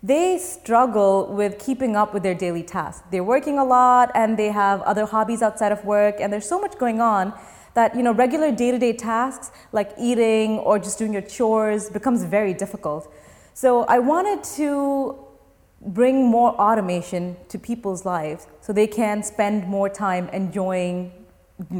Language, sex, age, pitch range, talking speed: English, female, 20-39, 195-245 Hz, 170 wpm